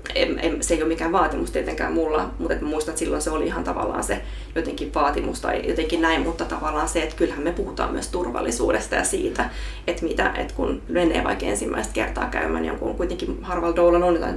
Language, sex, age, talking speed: Finnish, female, 20-39, 205 wpm